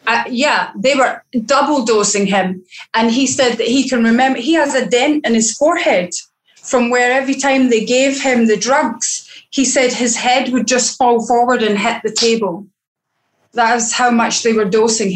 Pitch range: 200-245 Hz